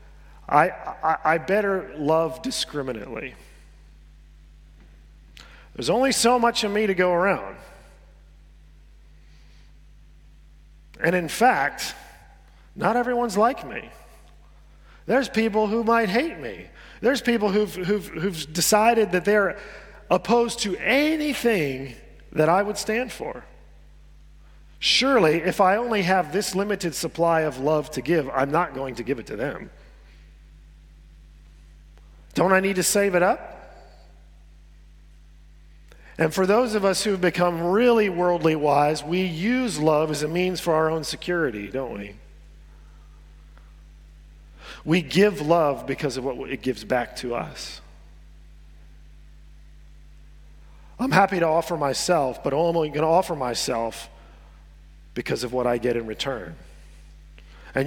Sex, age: male, 40-59